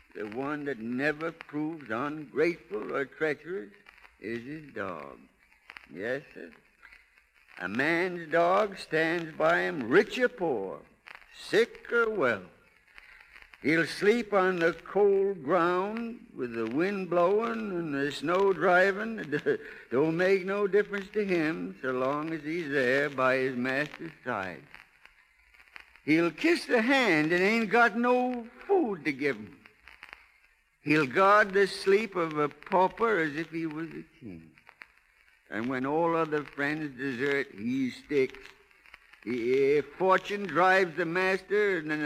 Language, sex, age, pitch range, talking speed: English, male, 60-79, 145-205 Hz, 135 wpm